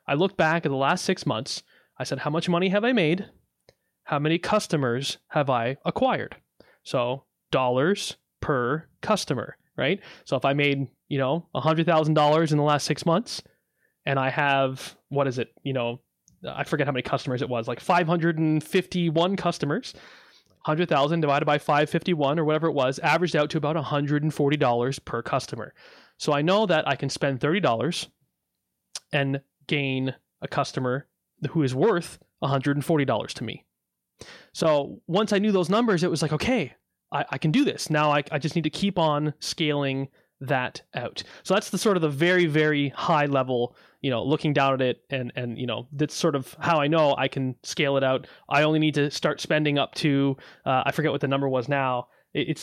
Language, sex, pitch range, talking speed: English, male, 135-165 Hz, 190 wpm